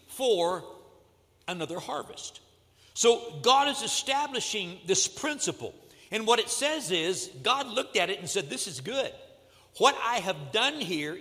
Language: English